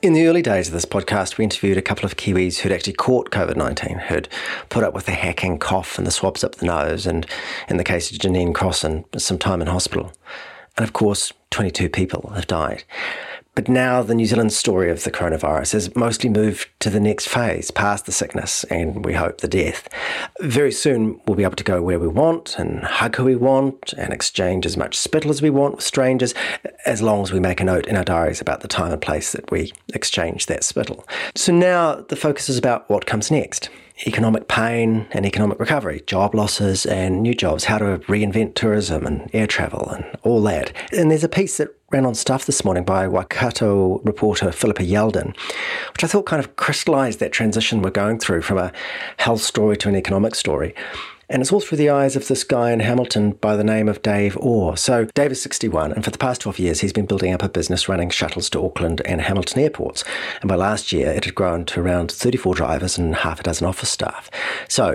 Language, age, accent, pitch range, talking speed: English, 40-59, Australian, 90-120 Hz, 220 wpm